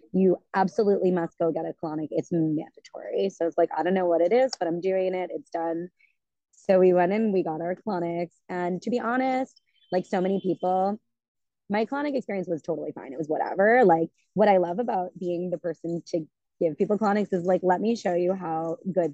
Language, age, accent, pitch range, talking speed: English, 20-39, American, 170-210 Hz, 215 wpm